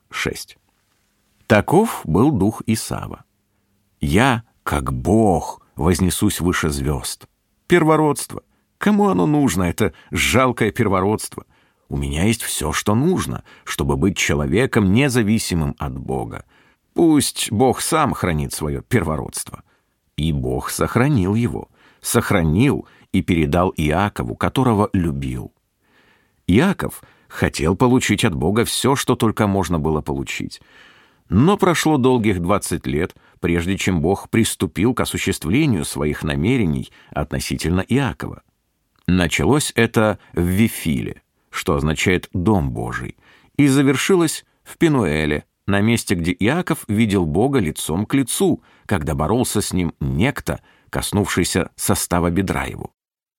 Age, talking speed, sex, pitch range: 50-69, 115 wpm, male, 80-120 Hz